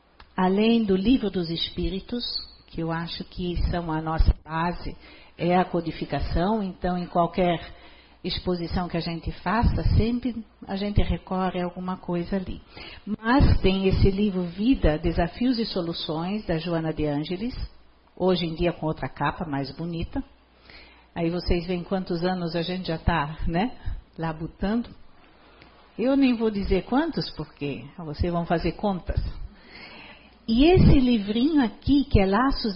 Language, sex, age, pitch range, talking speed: Portuguese, female, 50-69, 170-220 Hz, 145 wpm